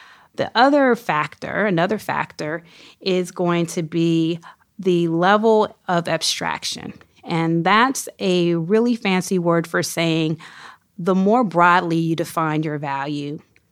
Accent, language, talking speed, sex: American, English, 120 wpm, female